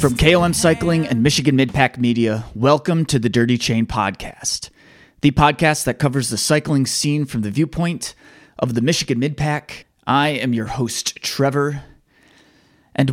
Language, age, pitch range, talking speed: English, 20-39, 110-140 Hz, 150 wpm